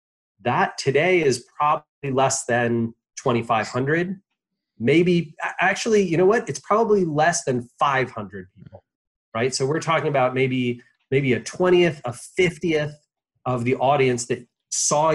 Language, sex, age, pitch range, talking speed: English, male, 30-49, 115-155 Hz, 135 wpm